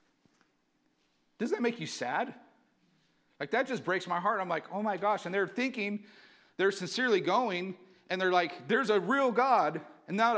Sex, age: male, 40-59